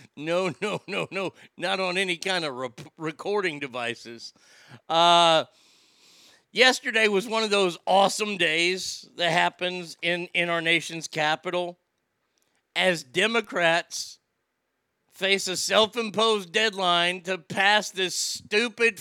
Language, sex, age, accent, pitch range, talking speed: English, male, 50-69, American, 165-215 Hz, 115 wpm